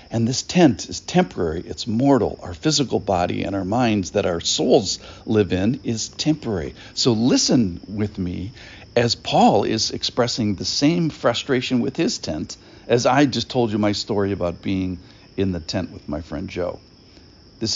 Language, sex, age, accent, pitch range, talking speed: English, male, 60-79, American, 95-120 Hz, 170 wpm